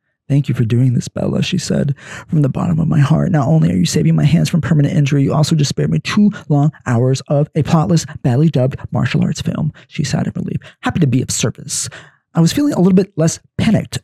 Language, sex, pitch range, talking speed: English, male, 130-180 Hz, 245 wpm